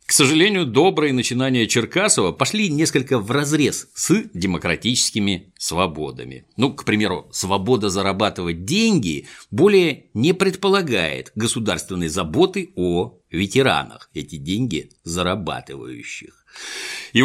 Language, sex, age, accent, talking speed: Russian, male, 60-79, native, 100 wpm